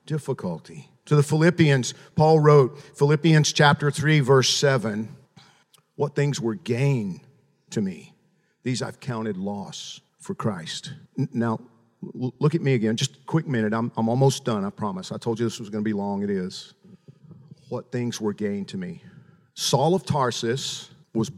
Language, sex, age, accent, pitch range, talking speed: English, male, 50-69, American, 135-185 Hz, 170 wpm